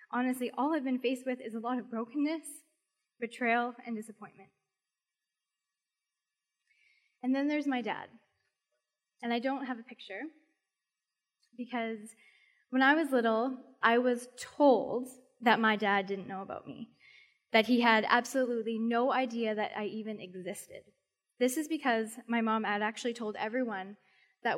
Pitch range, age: 200-245 Hz, 10-29